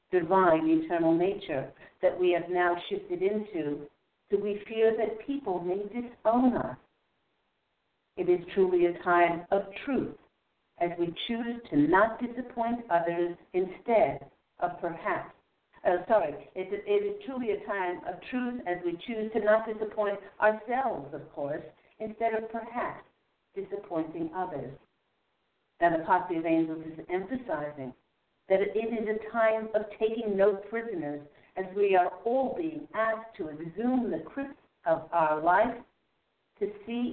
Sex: female